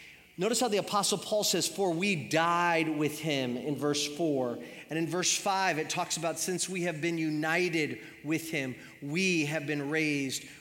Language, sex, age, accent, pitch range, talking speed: English, male, 30-49, American, 155-210 Hz, 180 wpm